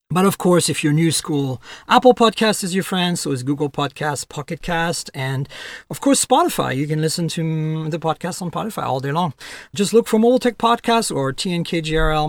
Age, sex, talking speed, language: 40-59, male, 200 wpm, English